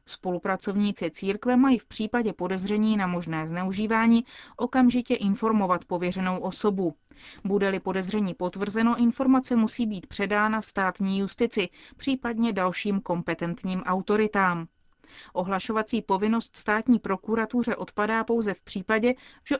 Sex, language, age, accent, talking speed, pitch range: female, Czech, 30-49, native, 105 wpm, 185-225 Hz